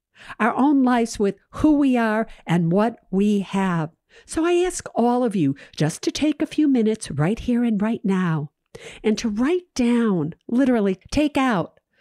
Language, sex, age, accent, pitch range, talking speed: English, female, 50-69, American, 180-235 Hz, 175 wpm